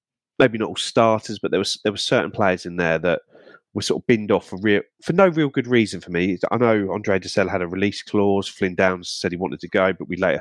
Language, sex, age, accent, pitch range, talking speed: English, male, 30-49, British, 90-105 Hz, 270 wpm